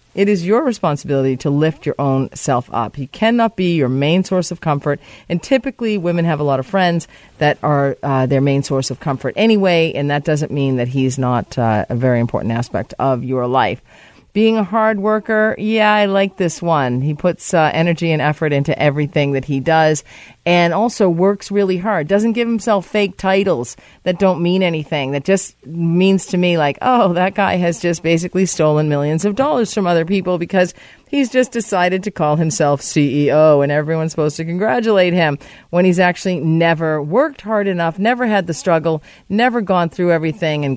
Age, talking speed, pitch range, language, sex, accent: 40-59, 195 wpm, 140-195 Hz, English, female, American